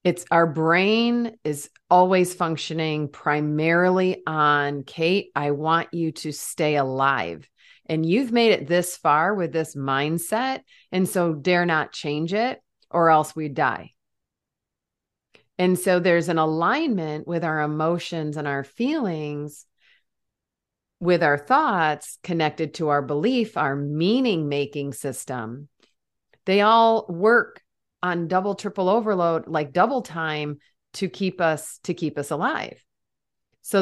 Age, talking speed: 40-59, 130 wpm